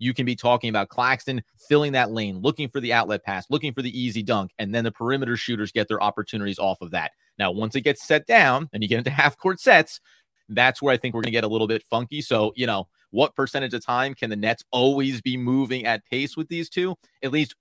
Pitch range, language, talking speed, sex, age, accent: 105-135 Hz, English, 250 wpm, male, 30-49, American